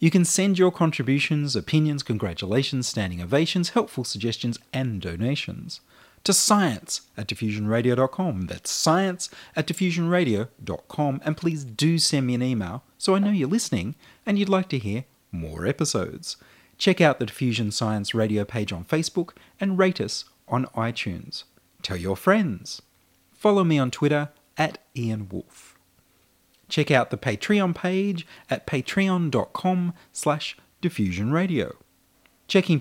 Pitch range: 115-180 Hz